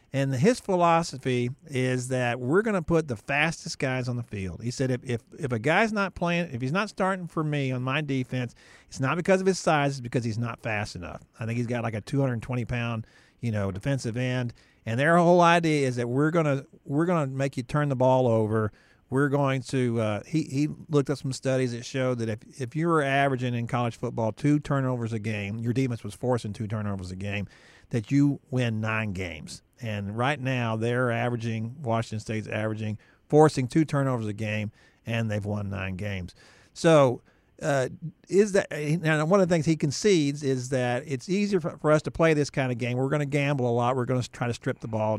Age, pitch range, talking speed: 50-69, 115-160 Hz, 220 wpm